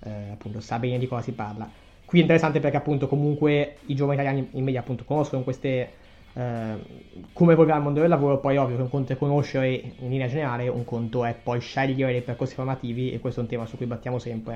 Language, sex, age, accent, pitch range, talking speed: Italian, male, 20-39, native, 120-145 Hz, 230 wpm